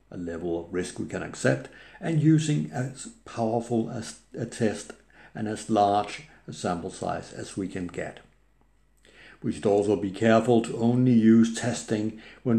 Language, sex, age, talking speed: English, male, 60-79, 160 wpm